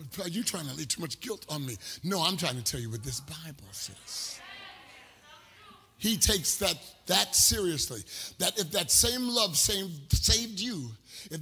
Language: English